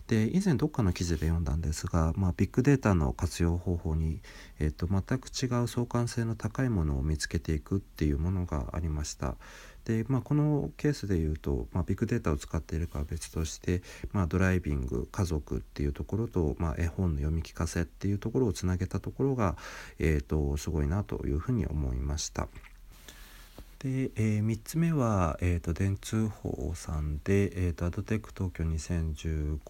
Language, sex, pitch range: Japanese, male, 80-105 Hz